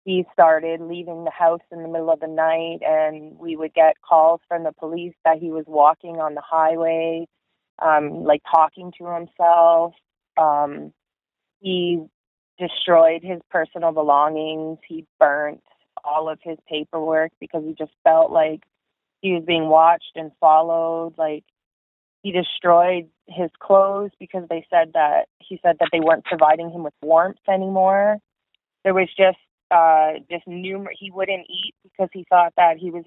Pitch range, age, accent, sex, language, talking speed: 160-180 Hz, 20-39, American, female, English, 160 wpm